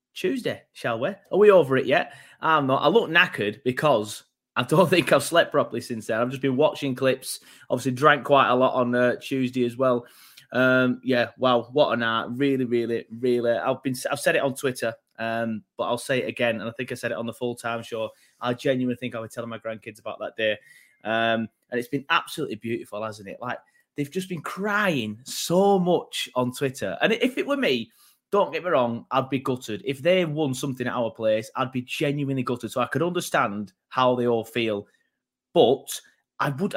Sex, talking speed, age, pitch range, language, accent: male, 215 wpm, 20-39, 120-160 Hz, English, British